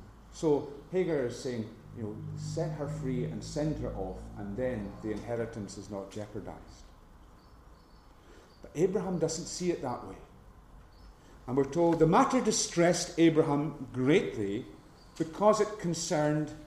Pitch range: 105-160 Hz